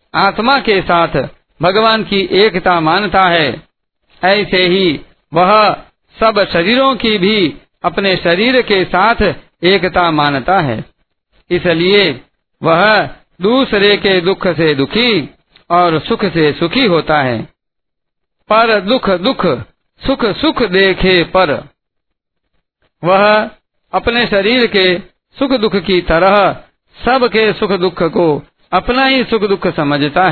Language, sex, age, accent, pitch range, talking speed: Hindi, male, 50-69, native, 175-220 Hz, 120 wpm